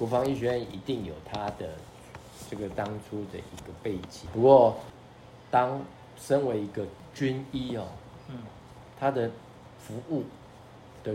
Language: Chinese